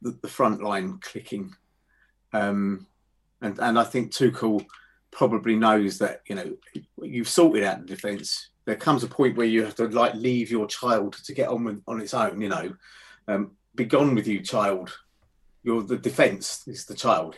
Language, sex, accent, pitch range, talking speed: English, male, British, 110-150 Hz, 185 wpm